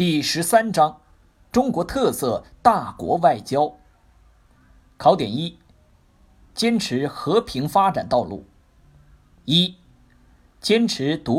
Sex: male